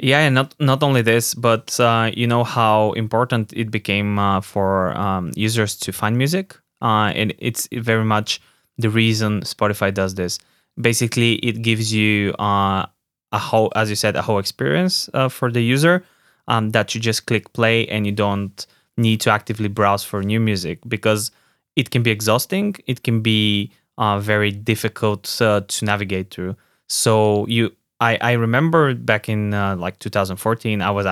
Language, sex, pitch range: English, male, 105-120 Hz